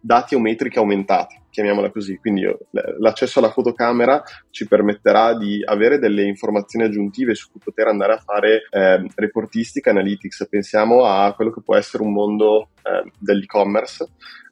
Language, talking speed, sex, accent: Italian, 150 wpm, male, native